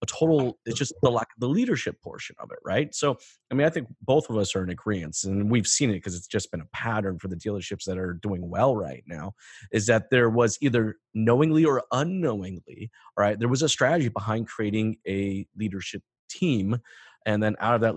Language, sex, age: English, male, 30-49